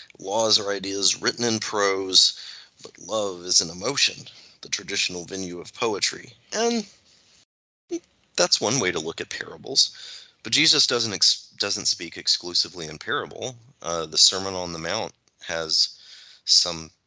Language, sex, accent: English, male, American